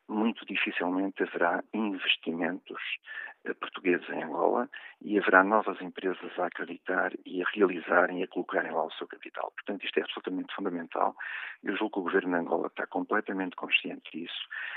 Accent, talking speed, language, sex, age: Portuguese, 160 wpm, Portuguese, male, 50-69